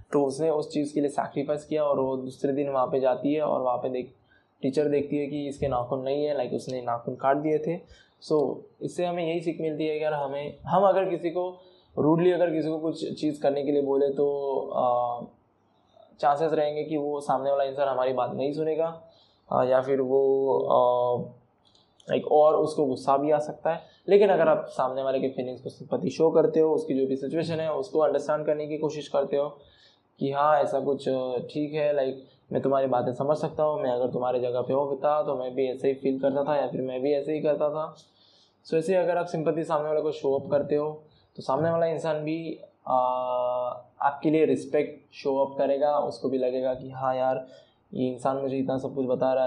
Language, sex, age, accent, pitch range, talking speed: Hindi, male, 10-29, native, 135-155 Hz, 220 wpm